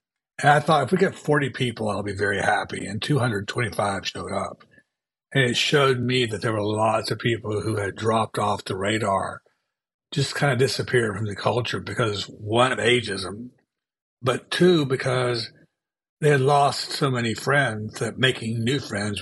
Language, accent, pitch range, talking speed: English, American, 105-130 Hz, 175 wpm